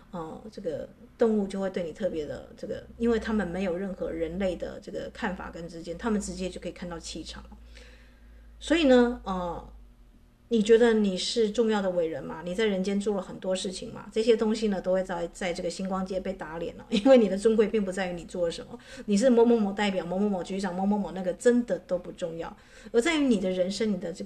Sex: female